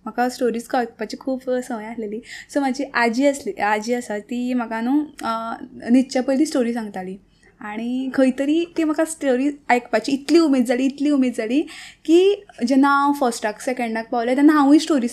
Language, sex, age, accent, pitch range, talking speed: Hindi, female, 20-39, native, 230-285 Hz, 130 wpm